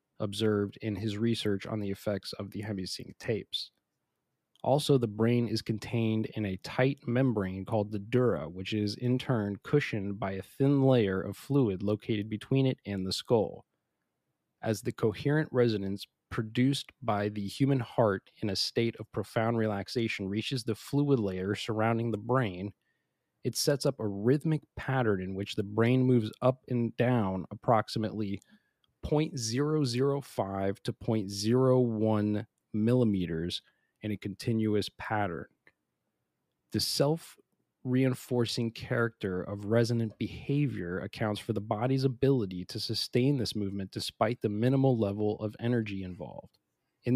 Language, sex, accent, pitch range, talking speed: English, male, American, 100-125 Hz, 135 wpm